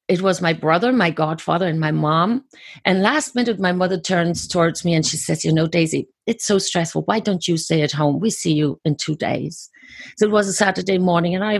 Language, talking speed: English, 240 wpm